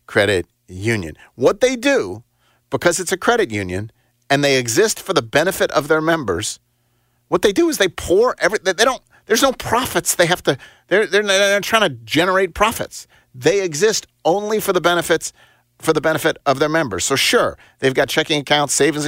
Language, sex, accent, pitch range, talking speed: English, male, American, 120-165 Hz, 190 wpm